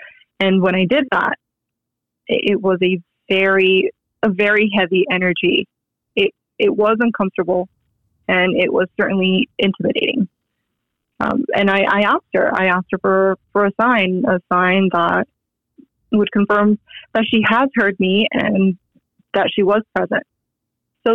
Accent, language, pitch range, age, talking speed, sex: American, English, 185-230 Hz, 20-39, 145 wpm, female